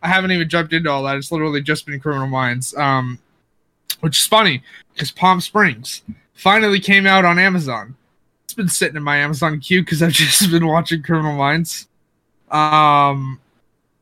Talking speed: 170 wpm